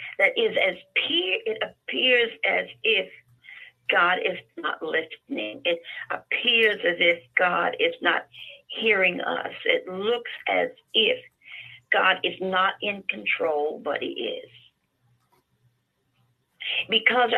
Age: 50-69